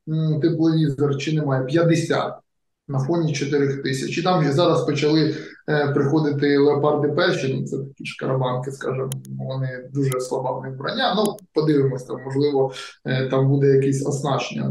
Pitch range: 135-165 Hz